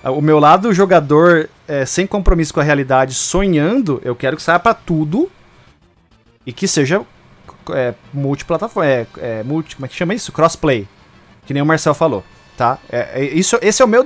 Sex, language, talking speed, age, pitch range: male, Portuguese, 190 wpm, 20-39, 130-185 Hz